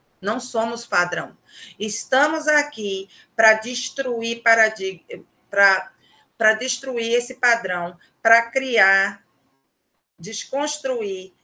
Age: 20-39